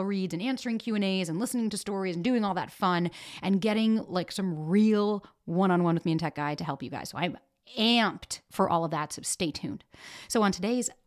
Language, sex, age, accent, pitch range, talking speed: English, female, 30-49, American, 175-220 Hz, 220 wpm